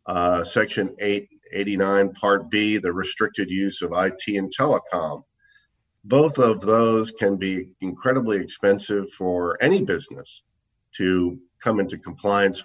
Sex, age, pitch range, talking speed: male, 50-69, 95-115 Hz, 125 wpm